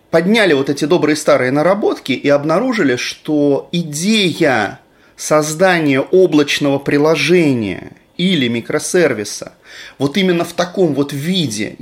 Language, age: Russian, 30-49